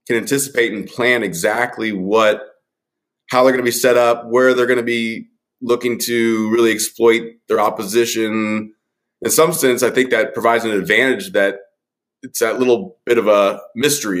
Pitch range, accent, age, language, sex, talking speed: 110-140 Hz, American, 30-49, English, male, 175 wpm